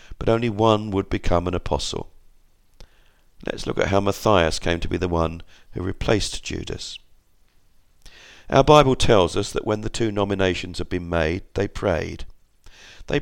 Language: English